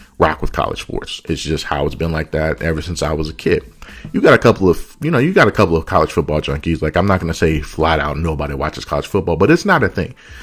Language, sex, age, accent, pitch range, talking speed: English, male, 30-49, American, 85-125 Hz, 280 wpm